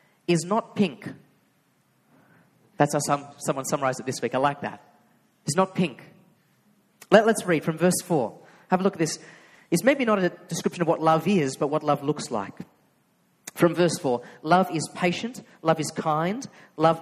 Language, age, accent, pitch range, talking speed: English, 40-59, Australian, 150-195 Hz, 175 wpm